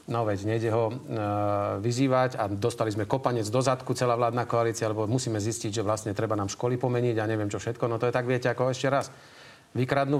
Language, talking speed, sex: Slovak, 220 wpm, male